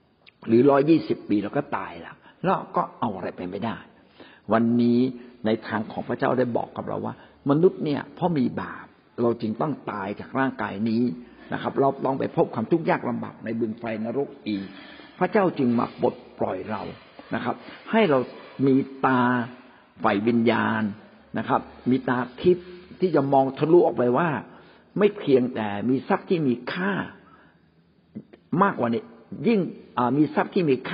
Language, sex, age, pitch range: Thai, male, 60-79, 120-185 Hz